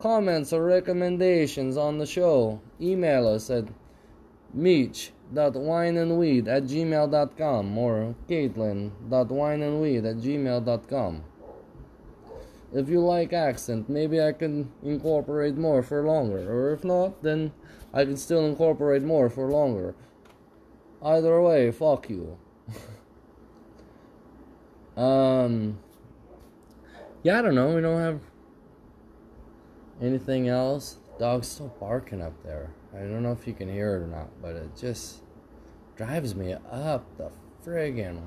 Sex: male